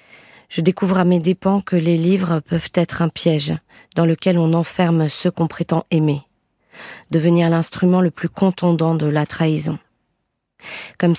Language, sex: French, female